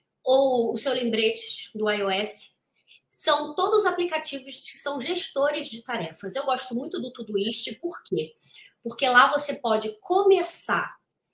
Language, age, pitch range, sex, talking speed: Portuguese, 20-39, 210-265 Hz, female, 140 wpm